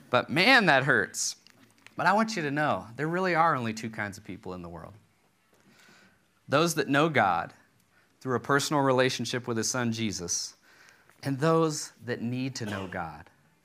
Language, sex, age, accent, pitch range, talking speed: English, male, 40-59, American, 110-155 Hz, 175 wpm